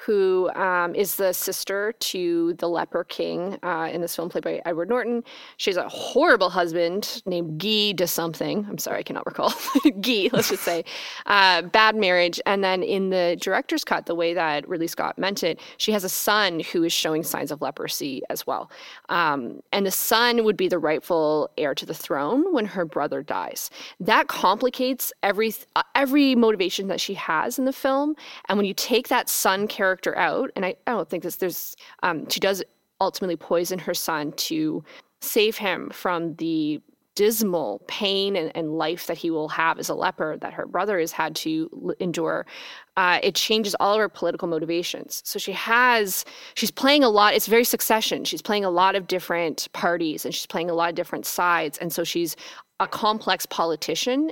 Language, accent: English, American